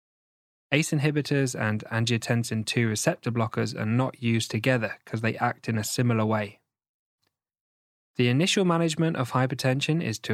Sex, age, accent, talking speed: male, 10-29, British, 145 wpm